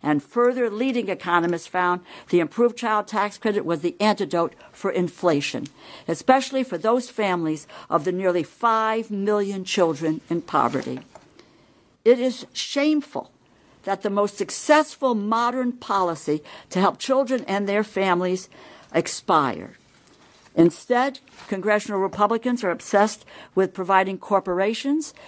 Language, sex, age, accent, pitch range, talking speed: English, female, 60-79, American, 165-220 Hz, 120 wpm